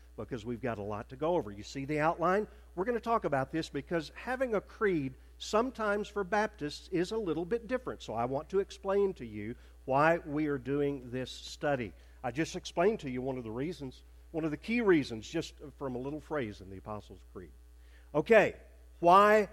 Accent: American